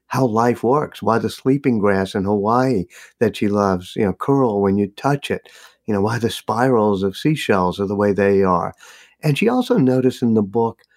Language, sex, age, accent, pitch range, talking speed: English, male, 50-69, American, 100-130 Hz, 210 wpm